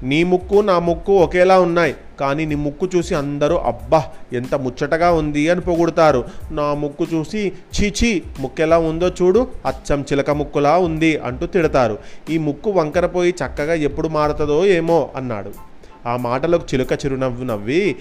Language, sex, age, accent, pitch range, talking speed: Telugu, male, 30-49, native, 135-170 Hz, 145 wpm